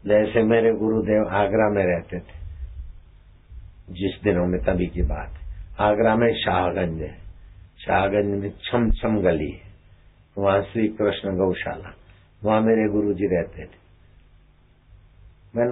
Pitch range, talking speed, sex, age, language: 90-110 Hz, 120 wpm, male, 60-79, Hindi